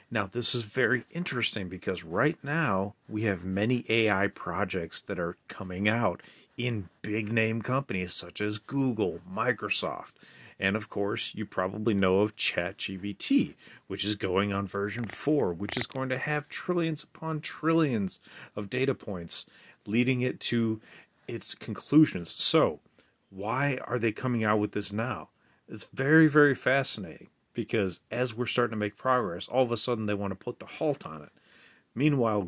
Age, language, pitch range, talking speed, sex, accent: 40-59, English, 100-130 Hz, 160 wpm, male, American